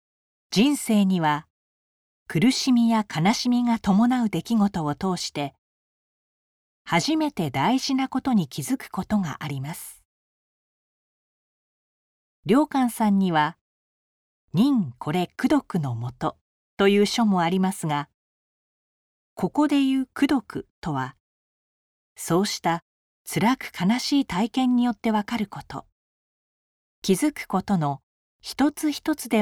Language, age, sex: Japanese, 40-59, female